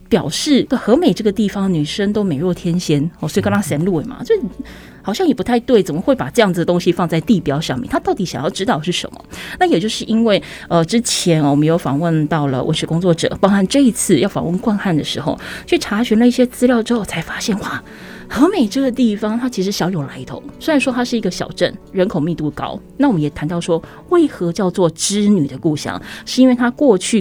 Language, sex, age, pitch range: Chinese, female, 20-39, 165-230 Hz